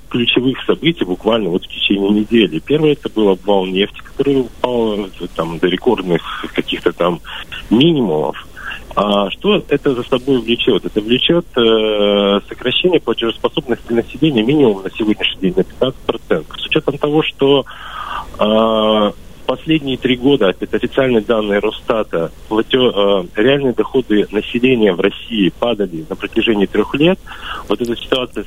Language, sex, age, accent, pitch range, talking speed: Russian, male, 40-59, native, 95-125 Hz, 130 wpm